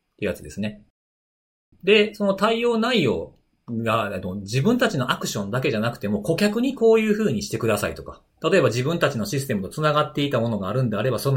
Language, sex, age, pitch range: Japanese, male, 40-59, 95-150 Hz